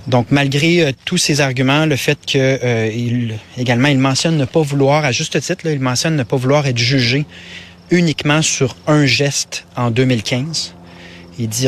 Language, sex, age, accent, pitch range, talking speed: French, male, 30-49, Canadian, 110-135 Hz, 180 wpm